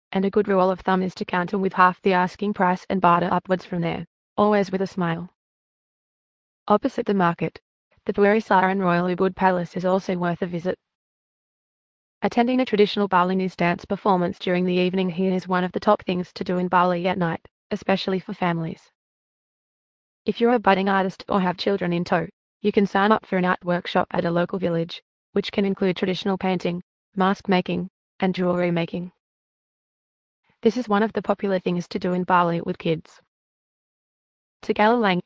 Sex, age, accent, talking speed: female, 20-39, Australian, 185 wpm